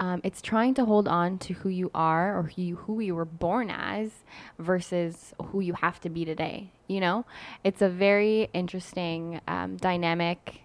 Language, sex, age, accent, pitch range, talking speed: English, female, 10-29, American, 165-195 Hz, 185 wpm